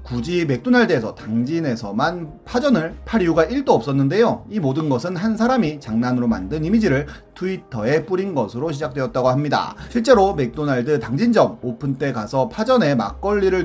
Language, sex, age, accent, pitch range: Korean, male, 30-49, native, 130-205 Hz